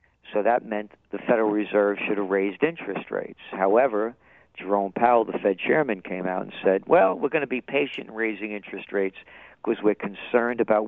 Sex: male